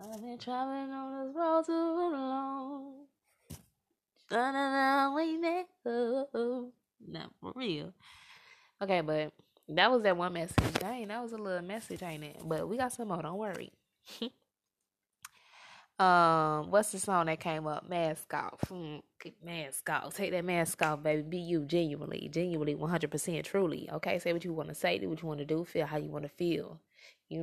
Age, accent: 20-39, American